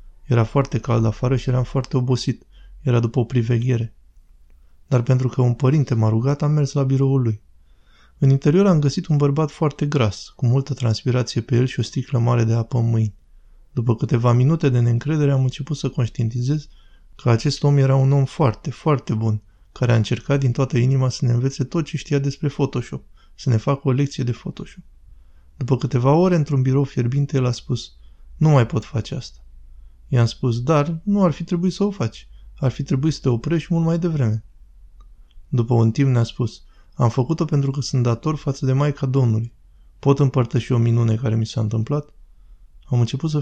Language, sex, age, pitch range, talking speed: Romanian, male, 20-39, 115-140 Hz, 200 wpm